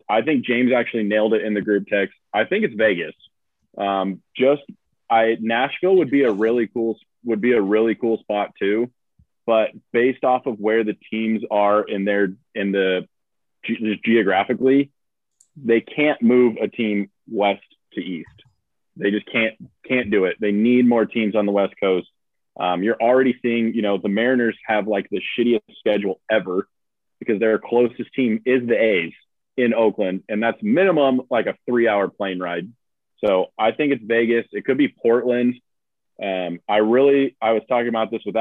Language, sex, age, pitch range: English, male, 20-39, 105-125 Hz